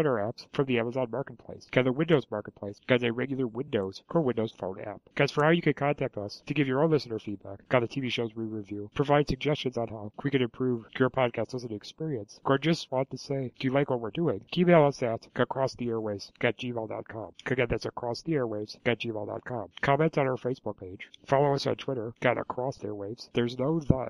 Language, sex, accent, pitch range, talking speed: English, male, American, 115-140 Hz, 200 wpm